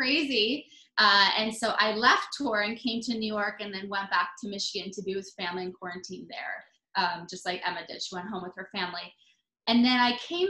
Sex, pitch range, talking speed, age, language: female, 195-245 Hz, 230 wpm, 20-39, English